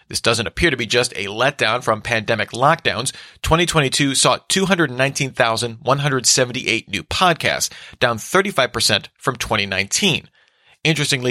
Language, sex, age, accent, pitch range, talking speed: English, male, 40-59, American, 115-145 Hz, 110 wpm